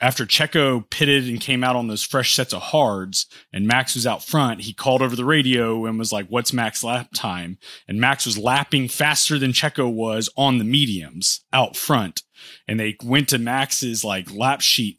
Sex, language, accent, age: male, English, American, 30-49